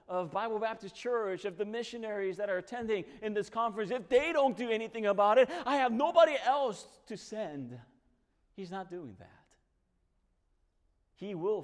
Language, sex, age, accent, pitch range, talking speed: English, male, 40-59, American, 100-145 Hz, 165 wpm